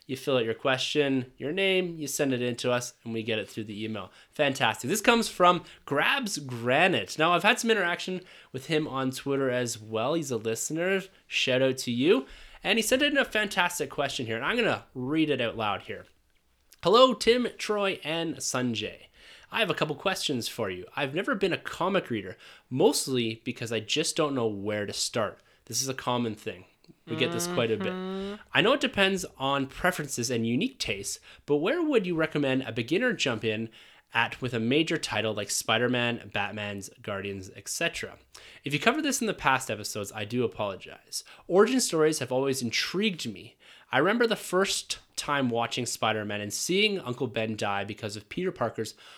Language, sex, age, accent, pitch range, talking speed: English, male, 20-39, American, 110-170 Hz, 195 wpm